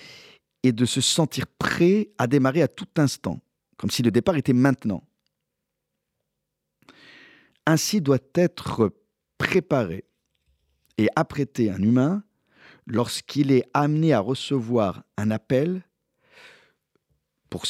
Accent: French